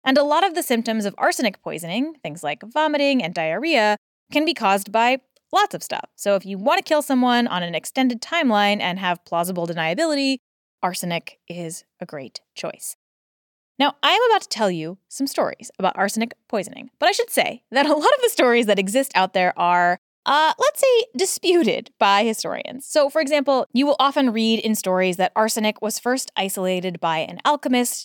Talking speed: 195 wpm